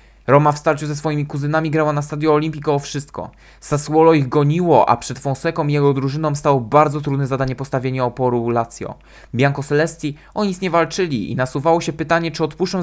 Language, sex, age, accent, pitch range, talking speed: Polish, male, 20-39, native, 140-165 Hz, 185 wpm